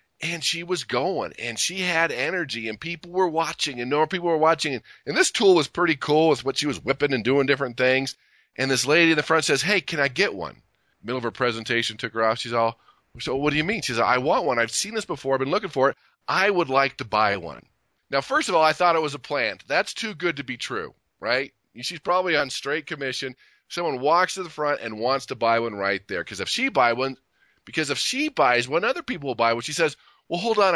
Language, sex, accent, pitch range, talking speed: English, male, American, 130-175 Hz, 265 wpm